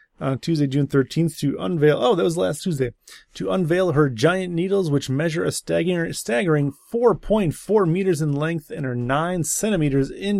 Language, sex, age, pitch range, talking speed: English, male, 30-49, 135-175 Hz, 165 wpm